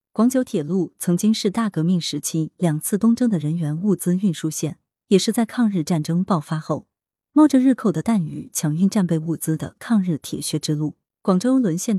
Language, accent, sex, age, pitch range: Chinese, native, female, 20-39, 160-225 Hz